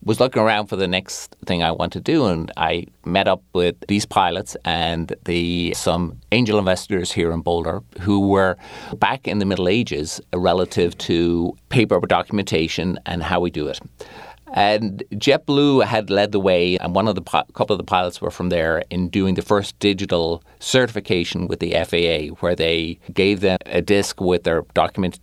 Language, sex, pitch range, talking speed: English, male, 85-100 Hz, 185 wpm